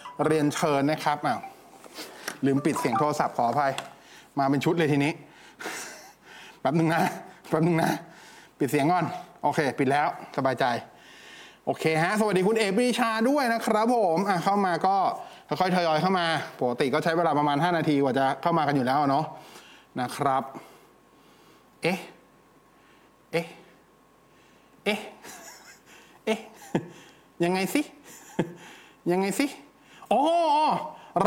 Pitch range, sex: 175-240 Hz, male